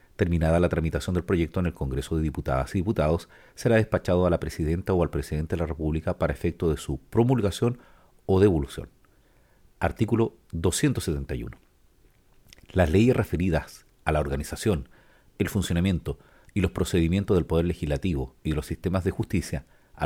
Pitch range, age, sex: 80-95 Hz, 40-59, male